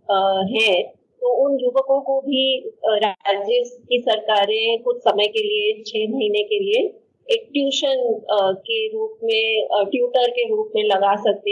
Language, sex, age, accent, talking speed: Hindi, female, 30-49, native, 145 wpm